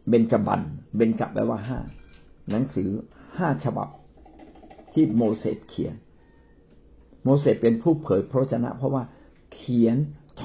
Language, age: Thai, 60-79